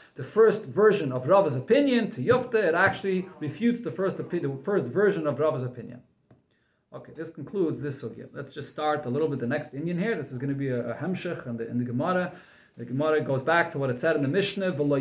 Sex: male